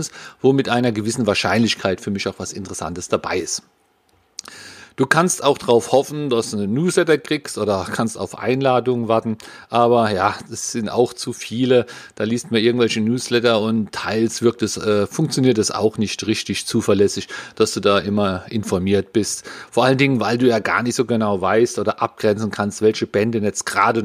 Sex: male